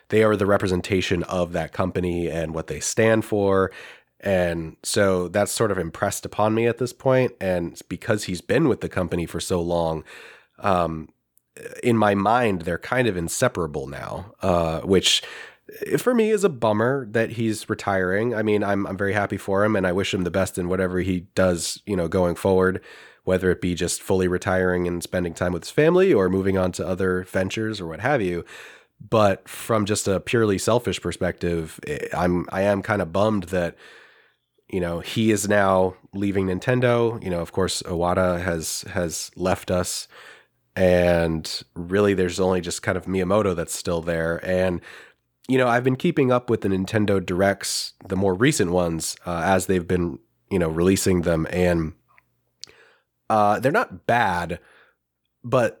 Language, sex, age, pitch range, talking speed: English, male, 30-49, 90-105 Hz, 180 wpm